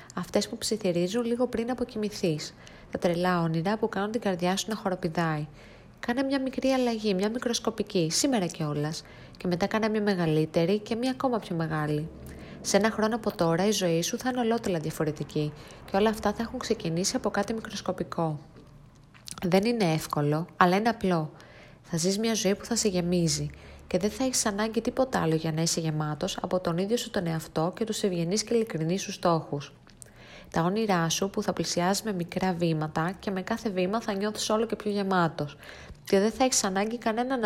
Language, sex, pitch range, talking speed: Greek, female, 165-220 Hz, 190 wpm